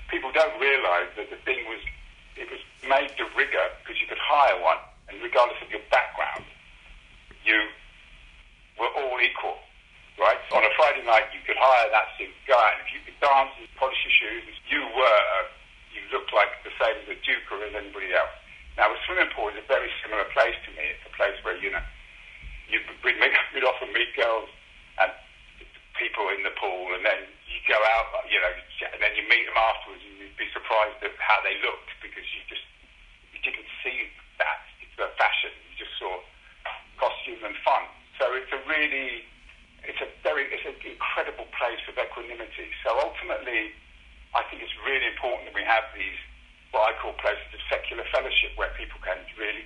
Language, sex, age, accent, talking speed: English, male, 50-69, British, 195 wpm